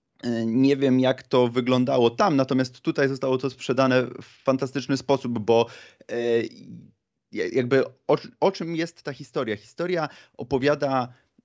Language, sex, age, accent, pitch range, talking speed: Polish, male, 30-49, native, 110-135 Hz, 125 wpm